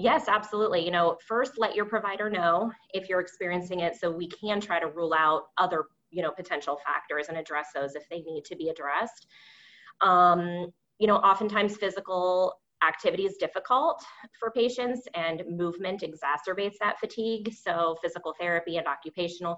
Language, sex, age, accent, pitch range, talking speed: English, female, 20-39, American, 165-205 Hz, 165 wpm